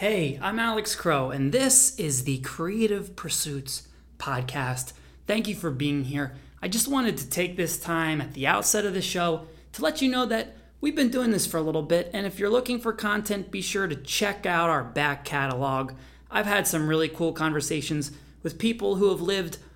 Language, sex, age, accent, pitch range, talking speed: English, male, 30-49, American, 145-195 Hz, 205 wpm